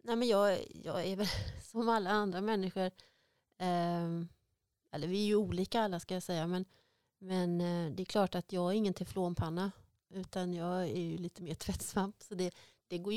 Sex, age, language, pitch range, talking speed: female, 30-49, Swedish, 170-205 Hz, 185 wpm